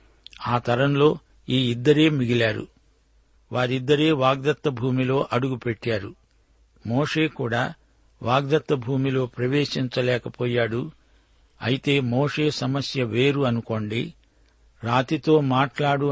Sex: male